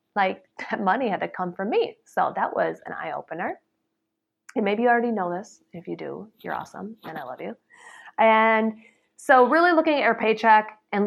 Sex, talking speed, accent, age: female, 200 wpm, American, 30-49